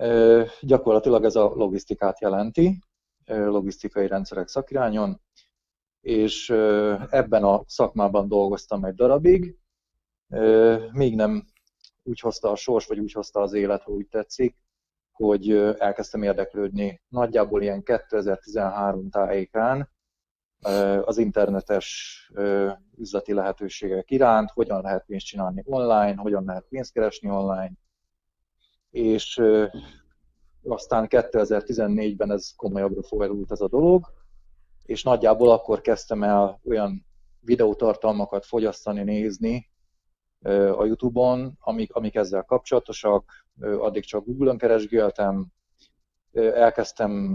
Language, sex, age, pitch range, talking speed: Hungarian, male, 30-49, 95-115 Hz, 100 wpm